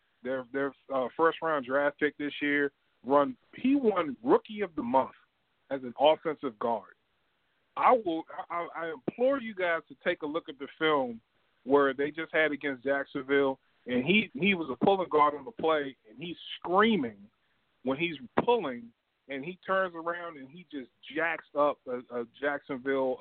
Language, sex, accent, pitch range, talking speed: English, male, American, 130-170 Hz, 175 wpm